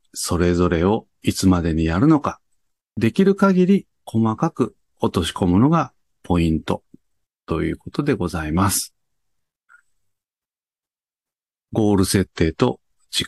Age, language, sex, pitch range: 50-69, Japanese, male, 90-135 Hz